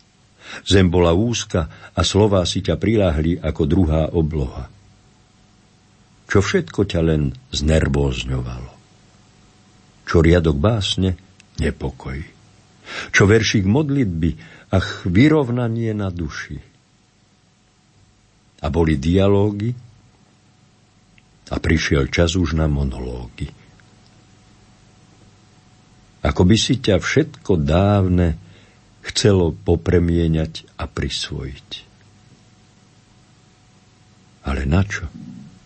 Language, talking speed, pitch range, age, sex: Slovak, 80 wpm, 85-105 Hz, 60-79, male